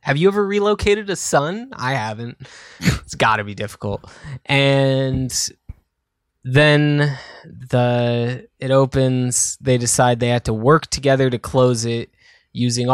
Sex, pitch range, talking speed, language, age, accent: male, 115-135 Hz, 135 wpm, English, 20-39, American